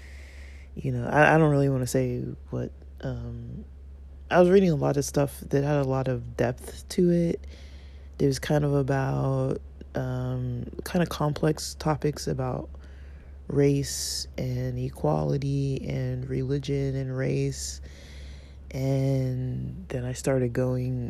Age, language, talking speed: 20-39, English, 140 wpm